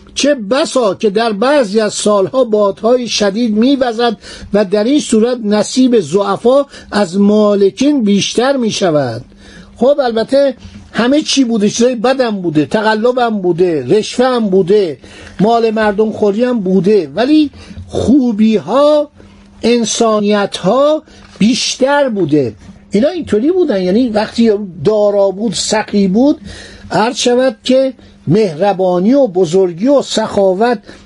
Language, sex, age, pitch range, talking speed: Persian, male, 50-69, 185-255 Hz, 120 wpm